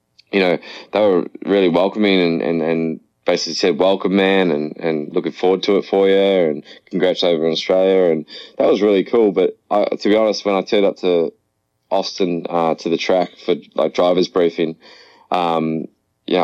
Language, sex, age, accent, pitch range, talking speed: English, male, 20-39, Australian, 90-100 Hz, 190 wpm